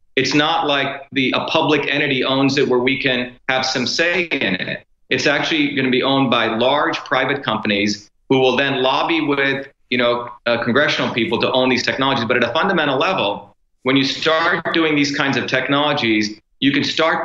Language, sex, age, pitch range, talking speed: English, male, 40-59, 125-150 Hz, 195 wpm